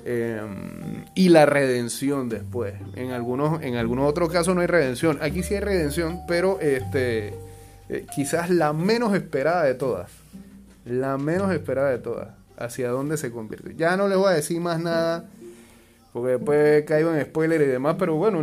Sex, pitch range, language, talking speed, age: male, 125-175 Hz, Spanish, 175 wpm, 30-49